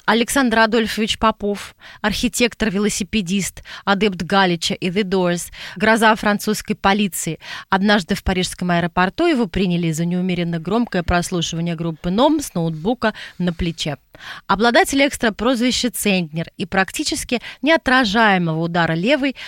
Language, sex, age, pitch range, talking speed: Russian, female, 20-39, 180-240 Hz, 115 wpm